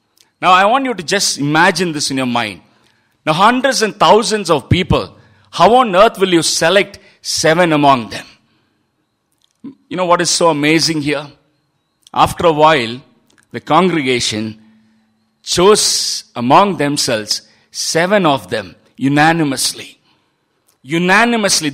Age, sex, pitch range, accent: 50-69, male, 120-185 Hz, Indian